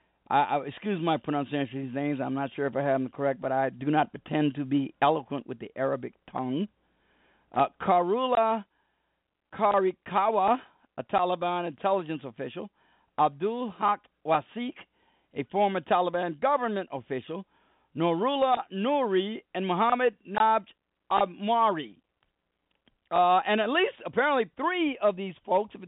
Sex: male